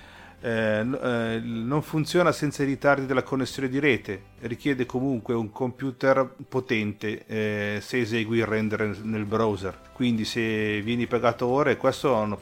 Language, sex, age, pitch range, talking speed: Italian, male, 40-59, 105-120 Hz, 145 wpm